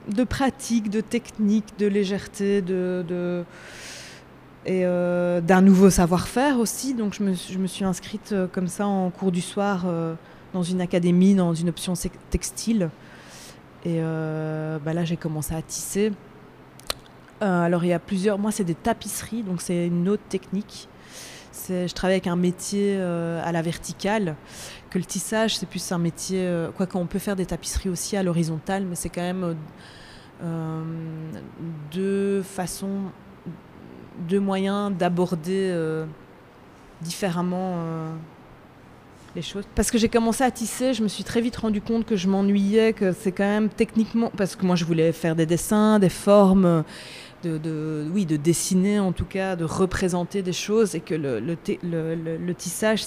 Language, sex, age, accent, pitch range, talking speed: French, female, 20-39, French, 170-200 Hz, 165 wpm